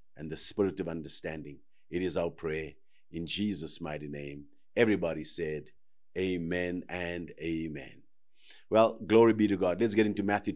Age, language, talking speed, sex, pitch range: 50-69, English, 155 wpm, male, 90-105 Hz